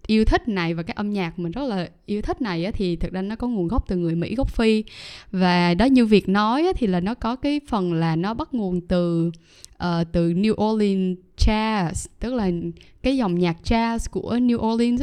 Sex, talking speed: female, 220 wpm